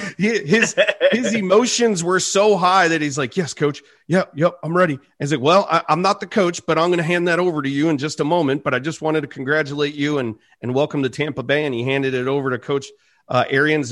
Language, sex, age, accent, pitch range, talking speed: English, male, 40-59, American, 120-175 Hz, 245 wpm